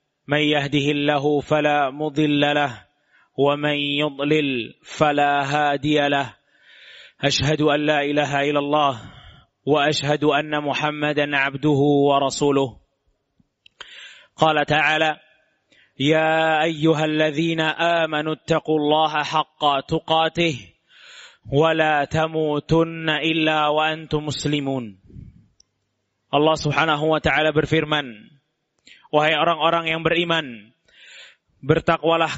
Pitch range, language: 145-170 Hz, Indonesian